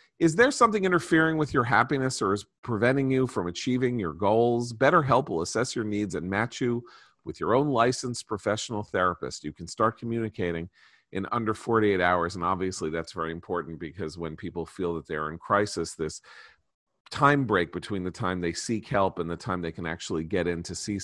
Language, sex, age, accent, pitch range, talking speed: English, male, 40-59, American, 85-115 Hz, 195 wpm